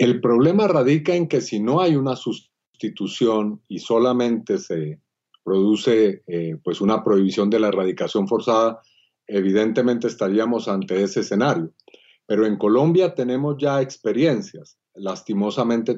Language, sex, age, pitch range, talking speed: Spanish, male, 40-59, 110-145 Hz, 130 wpm